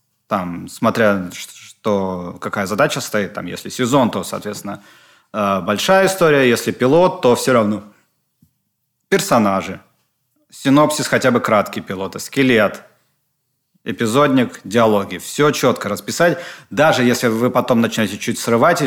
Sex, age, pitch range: male, 30-49, 100-125 Hz